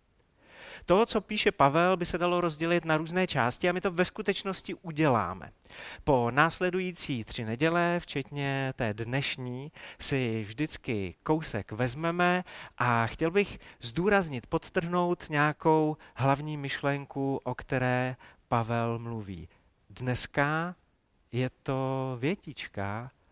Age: 40-59